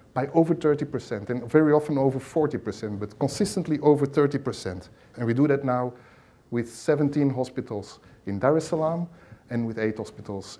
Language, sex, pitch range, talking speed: English, male, 110-145 Hz, 160 wpm